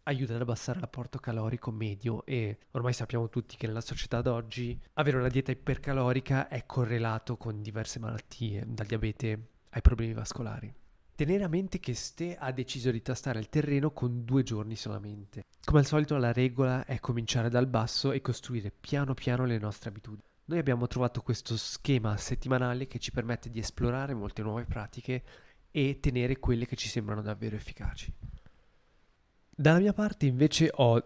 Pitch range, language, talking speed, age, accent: 115-135 Hz, Italian, 170 wpm, 20-39, native